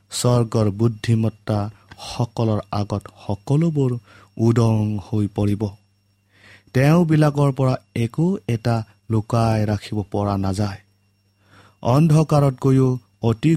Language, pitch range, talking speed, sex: English, 100-125 Hz, 90 wpm, male